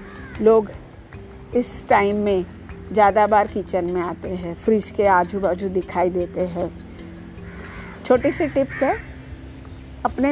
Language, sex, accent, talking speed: Hindi, female, native, 130 wpm